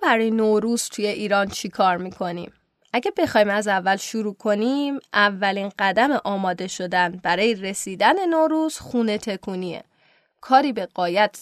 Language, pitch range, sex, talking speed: Persian, 195-260 Hz, female, 130 wpm